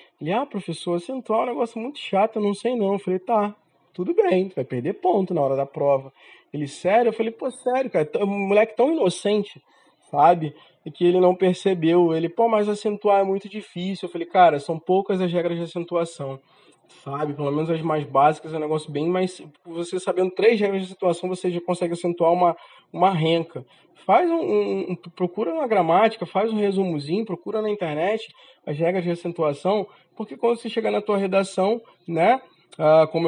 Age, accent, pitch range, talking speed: 20-39, Brazilian, 155-200 Hz, 200 wpm